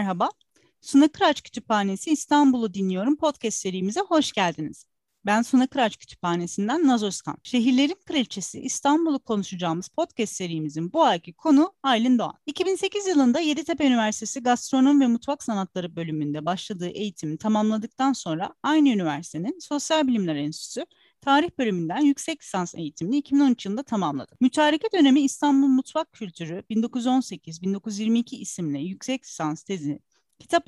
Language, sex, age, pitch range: Turkish, female, 40-59, 195-280 Hz